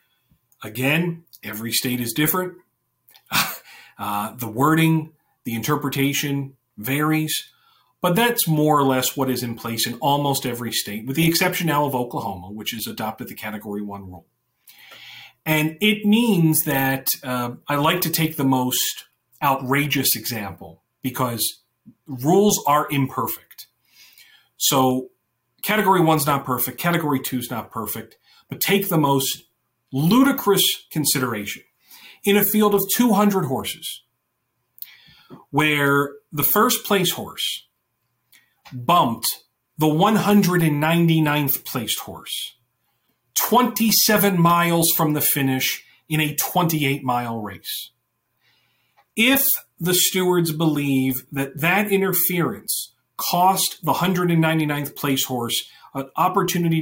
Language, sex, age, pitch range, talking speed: English, male, 40-59, 125-175 Hz, 115 wpm